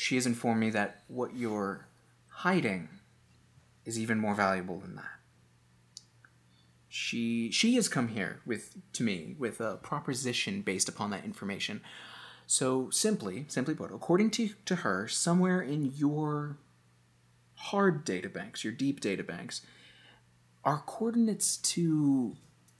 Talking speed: 125 wpm